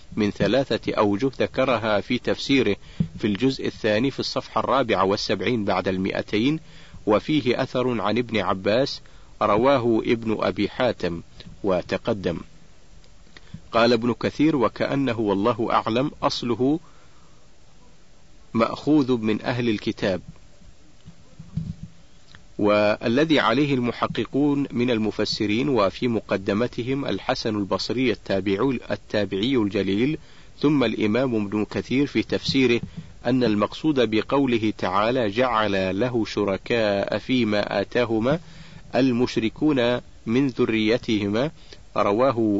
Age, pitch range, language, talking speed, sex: 50-69, 105-130 Hz, Arabic, 95 wpm, male